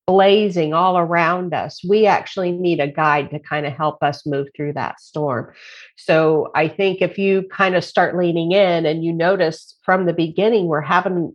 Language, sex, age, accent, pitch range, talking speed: English, female, 50-69, American, 155-185 Hz, 190 wpm